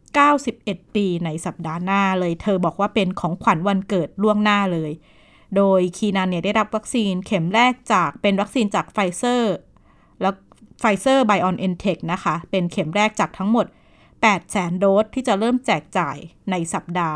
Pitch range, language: 180-220 Hz, Thai